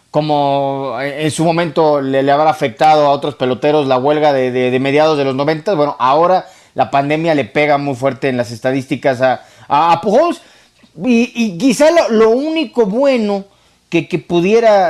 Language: Spanish